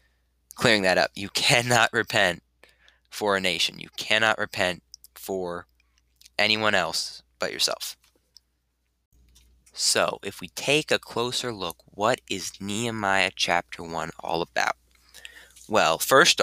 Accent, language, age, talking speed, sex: American, English, 20-39, 120 wpm, male